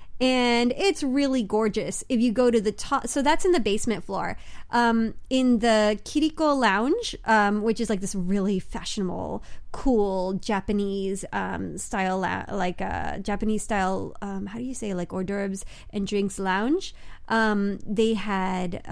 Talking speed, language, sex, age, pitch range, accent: 160 wpm, English, female, 30-49, 190-225 Hz, American